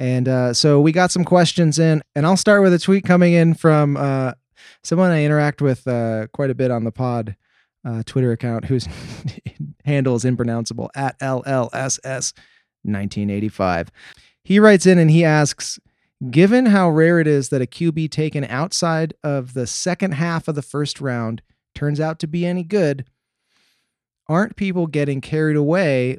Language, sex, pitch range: English, male, 125-165 Hz